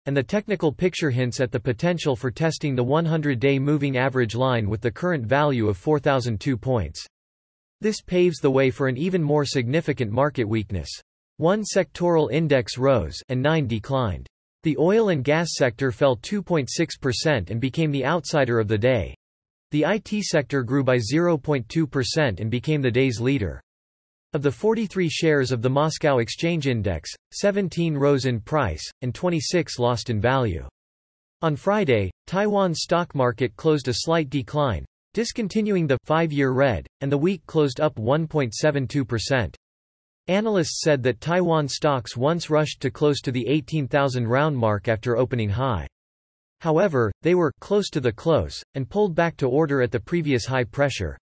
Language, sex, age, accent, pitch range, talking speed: English, male, 40-59, American, 120-160 Hz, 160 wpm